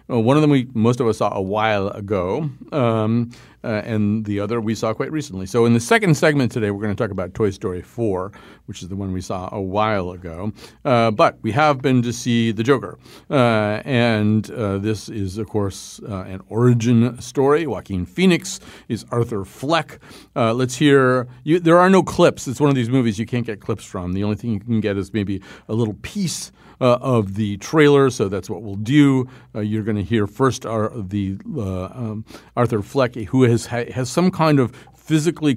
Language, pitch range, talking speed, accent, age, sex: English, 100-125 Hz, 215 wpm, American, 50-69, male